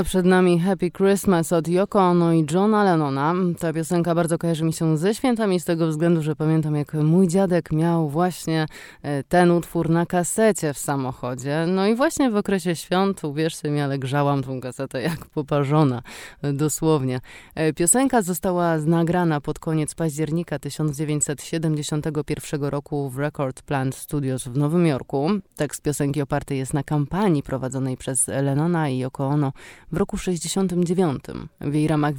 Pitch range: 140-175 Hz